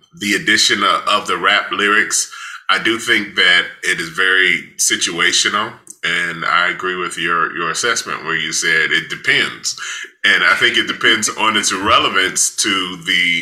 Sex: male